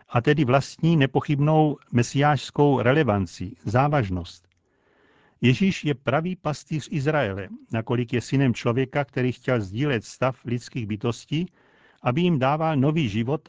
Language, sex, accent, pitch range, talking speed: Czech, male, native, 115-145 Hz, 120 wpm